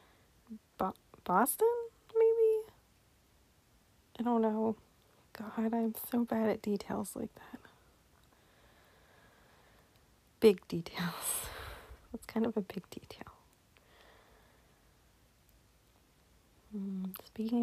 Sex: female